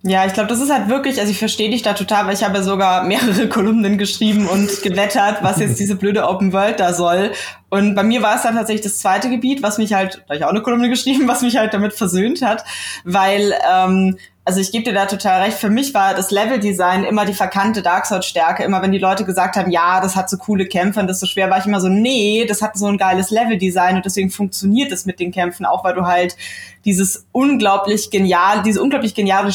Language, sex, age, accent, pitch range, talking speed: German, female, 20-39, German, 190-220 Hz, 245 wpm